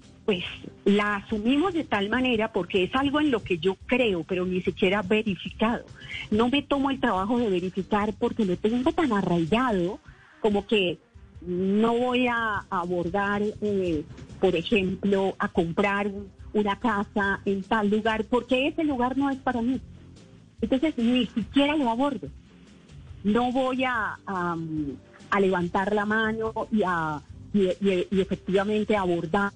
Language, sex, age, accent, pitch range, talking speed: Spanish, female, 40-59, Colombian, 195-245 Hz, 145 wpm